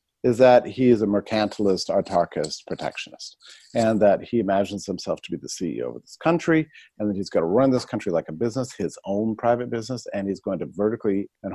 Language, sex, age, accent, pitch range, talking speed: English, male, 50-69, American, 105-130 Hz, 215 wpm